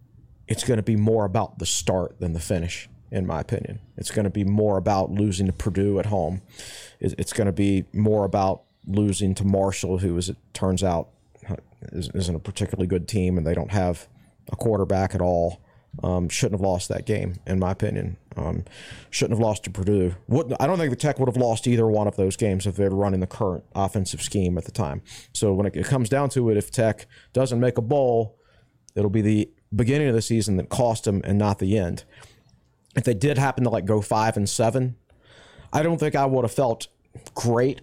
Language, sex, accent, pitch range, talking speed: English, male, American, 95-120 Hz, 215 wpm